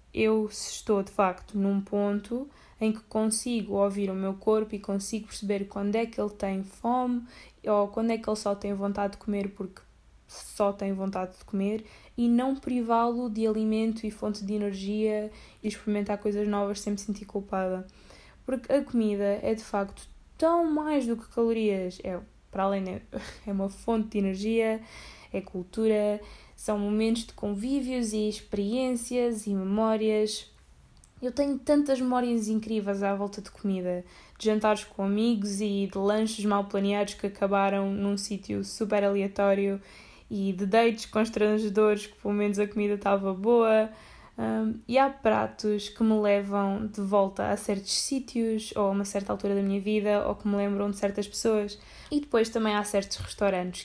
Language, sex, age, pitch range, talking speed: Portuguese, female, 10-29, 200-230 Hz, 170 wpm